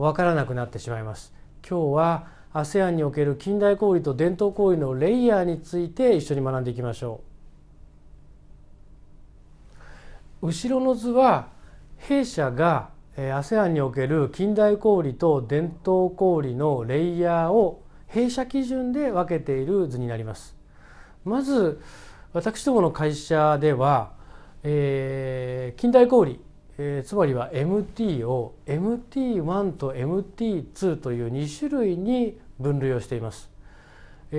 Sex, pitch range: male, 125-185 Hz